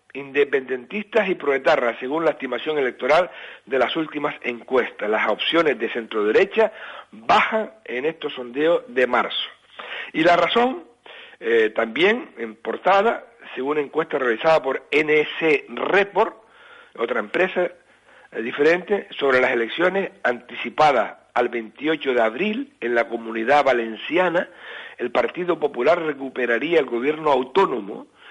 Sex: male